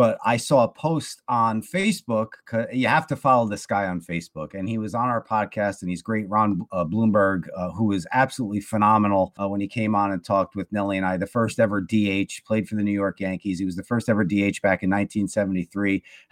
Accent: American